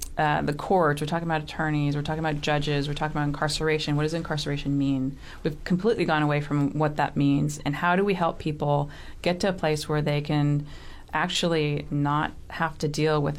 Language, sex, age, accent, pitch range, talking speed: English, female, 30-49, American, 145-165 Hz, 205 wpm